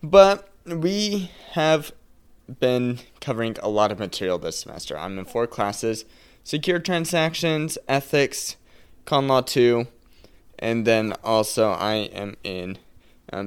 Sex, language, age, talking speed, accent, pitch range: male, English, 20-39, 125 wpm, American, 100-135 Hz